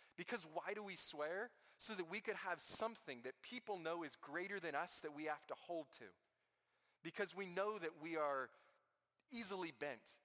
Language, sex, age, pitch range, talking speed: English, male, 20-39, 135-190 Hz, 185 wpm